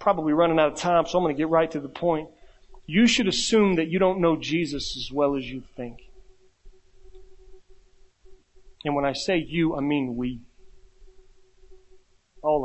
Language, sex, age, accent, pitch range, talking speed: English, male, 40-59, American, 155-250 Hz, 170 wpm